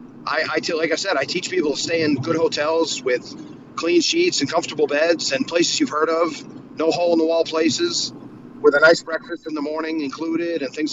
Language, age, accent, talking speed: English, 40-59, American, 220 wpm